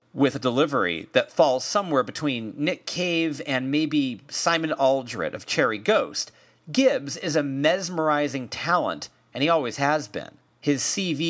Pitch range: 125-165 Hz